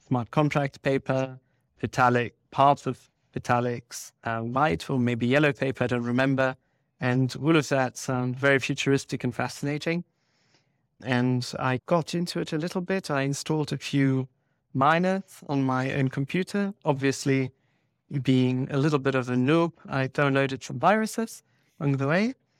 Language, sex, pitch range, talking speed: English, male, 130-150 Hz, 150 wpm